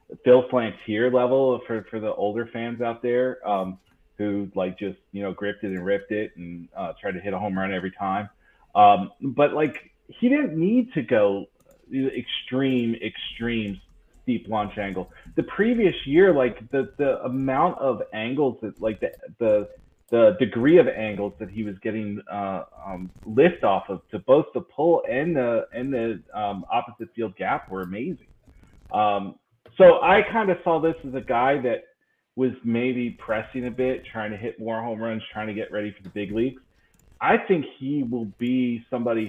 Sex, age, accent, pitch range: male, 30-49, American, 100-130 Hz